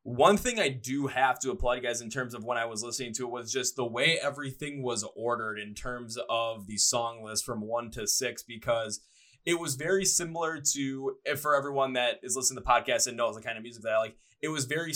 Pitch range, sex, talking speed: 115-135 Hz, male, 240 wpm